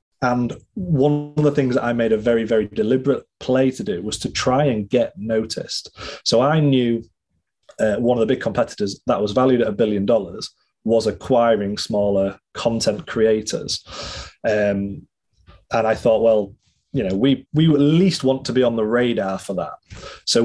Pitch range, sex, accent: 105-135 Hz, male, British